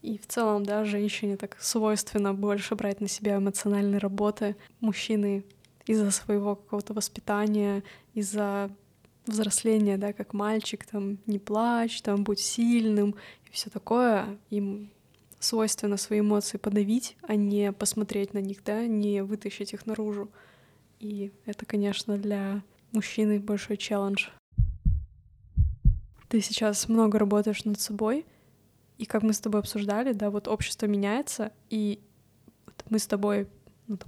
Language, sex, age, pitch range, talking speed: Russian, female, 20-39, 205-220 Hz, 130 wpm